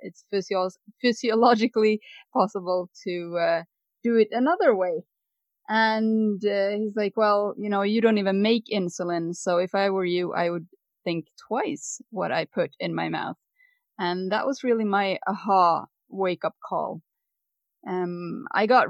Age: 20-39